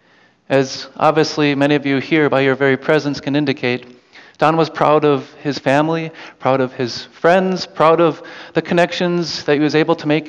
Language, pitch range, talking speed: English, 135-165 Hz, 185 wpm